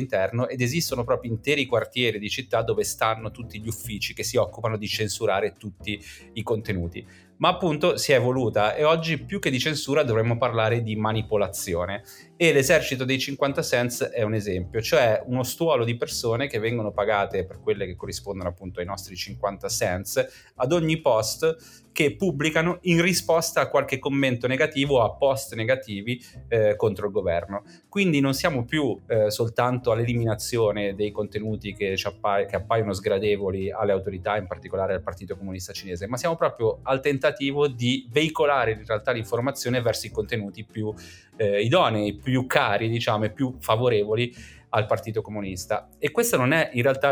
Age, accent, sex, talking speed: 30-49, native, male, 170 wpm